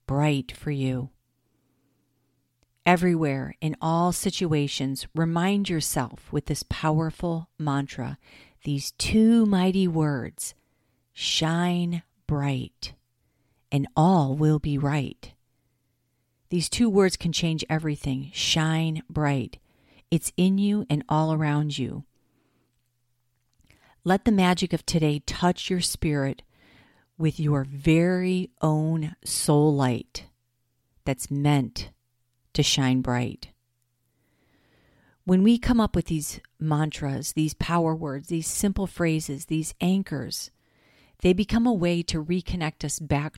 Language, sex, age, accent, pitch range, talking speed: English, female, 50-69, American, 135-170 Hz, 110 wpm